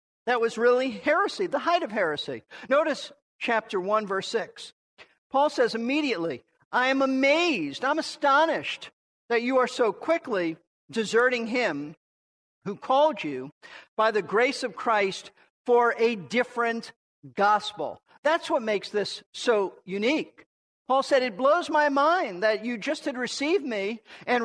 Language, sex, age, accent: English, male, 50-69, American